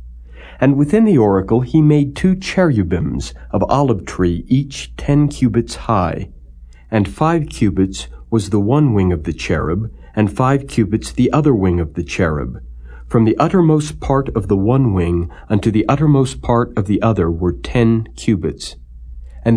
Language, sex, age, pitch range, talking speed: English, male, 60-79, 85-120 Hz, 165 wpm